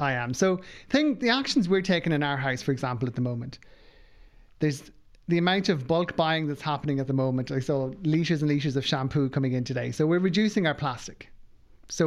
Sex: male